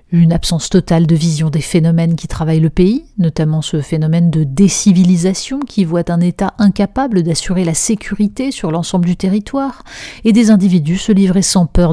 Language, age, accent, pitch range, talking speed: French, 30-49, French, 165-200 Hz, 175 wpm